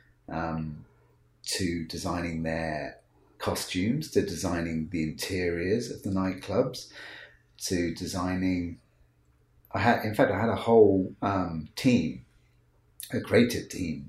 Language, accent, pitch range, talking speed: English, British, 80-100 Hz, 115 wpm